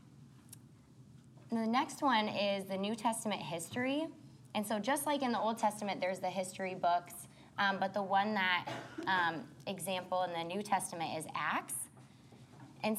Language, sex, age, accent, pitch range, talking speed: English, female, 20-39, American, 155-210 Hz, 160 wpm